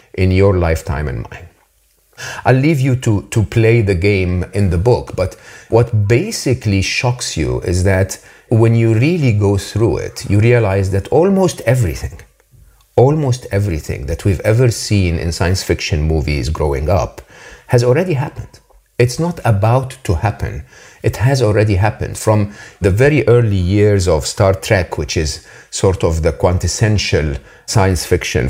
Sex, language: male, English